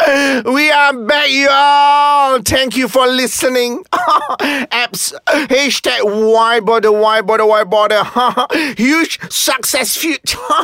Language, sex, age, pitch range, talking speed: Malay, male, 30-49, 210-270 Hz, 100 wpm